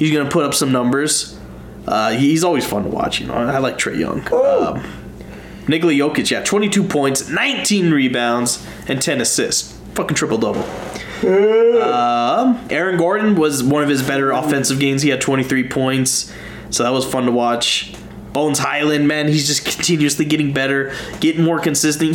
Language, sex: English, male